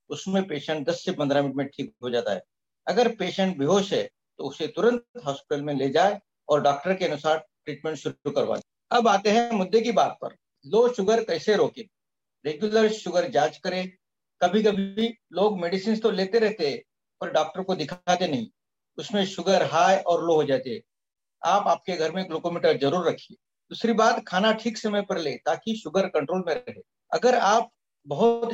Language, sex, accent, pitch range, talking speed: English, male, Indian, 165-220 Hz, 115 wpm